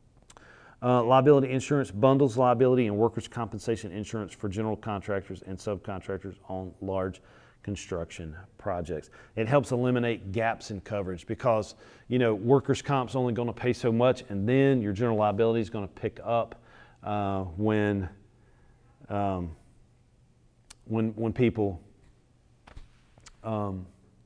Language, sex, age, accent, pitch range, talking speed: English, male, 40-59, American, 100-125 Hz, 125 wpm